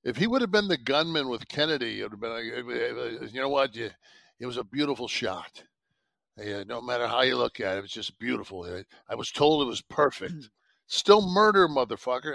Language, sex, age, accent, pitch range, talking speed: English, male, 60-79, American, 135-205 Hz, 205 wpm